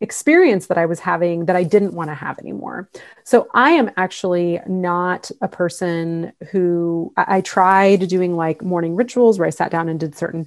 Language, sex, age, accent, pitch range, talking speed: English, female, 30-49, American, 165-200 Hz, 195 wpm